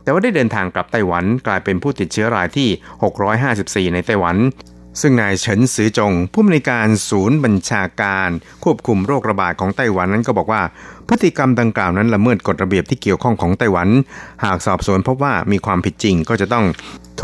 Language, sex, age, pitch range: Thai, male, 60-79, 95-120 Hz